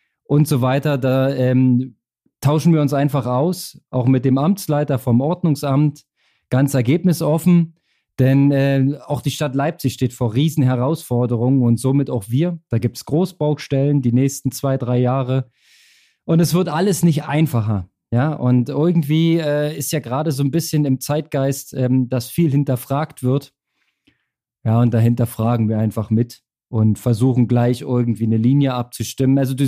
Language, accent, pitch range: German, German, 125-155 Hz